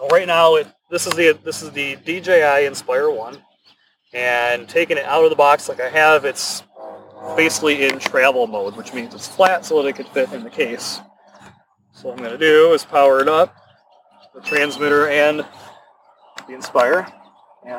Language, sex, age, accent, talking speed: English, male, 30-49, American, 185 wpm